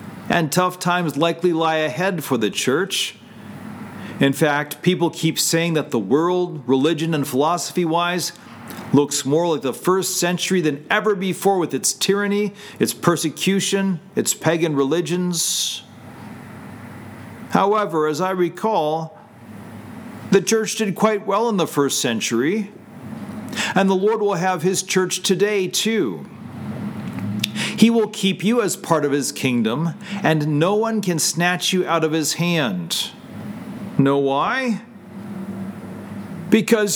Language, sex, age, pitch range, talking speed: English, male, 50-69, 155-205 Hz, 135 wpm